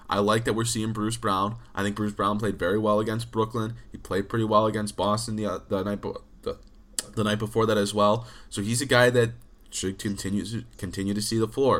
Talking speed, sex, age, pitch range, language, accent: 235 wpm, male, 20-39, 100-115 Hz, English, American